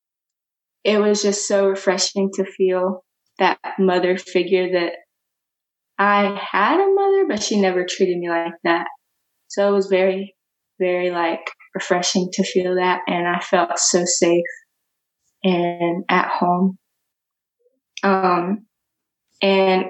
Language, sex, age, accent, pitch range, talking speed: English, female, 20-39, American, 180-200 Hz, 125 wpm